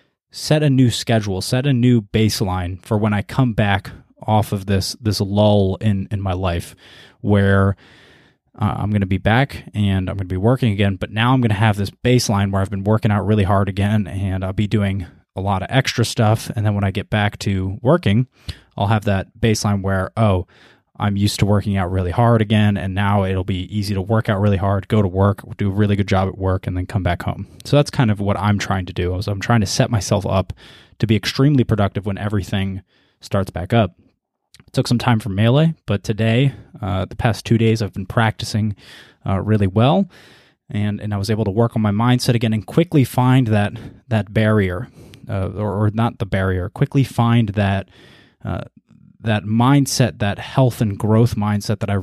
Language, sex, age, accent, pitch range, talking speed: English, male, 20-39, American, 100-115 Hz, 215 wpm